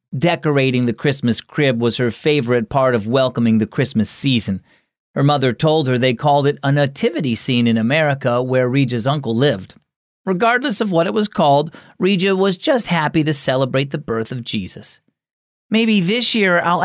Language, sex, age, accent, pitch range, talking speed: English, male, 40-59, American, 115-155 Hz, 175 wpm